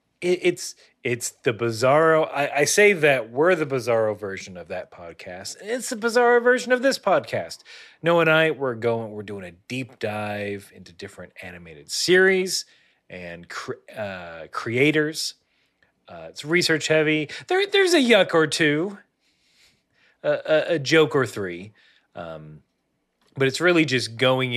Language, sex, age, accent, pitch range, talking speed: English, male, 30-49, American, 105-155 Hz, 150 wpm